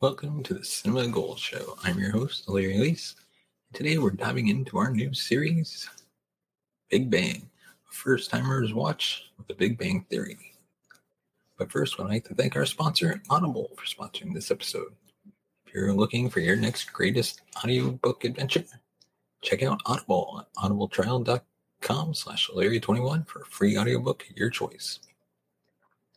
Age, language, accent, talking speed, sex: 30-49, English, American, 145 wpm, male